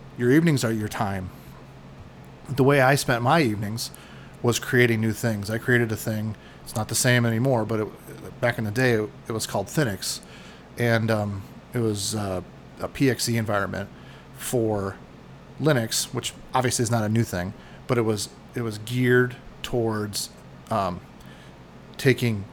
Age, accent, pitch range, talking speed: 40-59, American, 105-125 Hz, 160 wpm